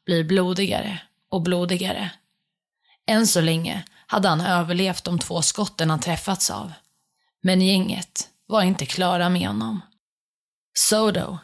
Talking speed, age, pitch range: 125 wpm, 30-49, 165-195 Hz